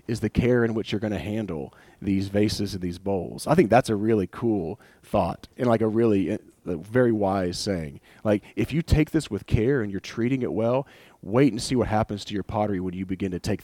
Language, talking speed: English, 230 wpm